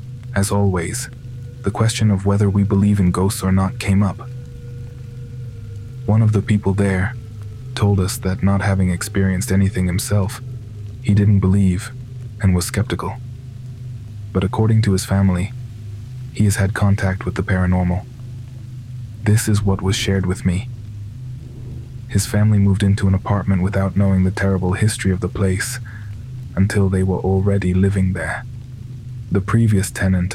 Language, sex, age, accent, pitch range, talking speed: English, male, 20-39, American, 95-120 Hz, 150 wpm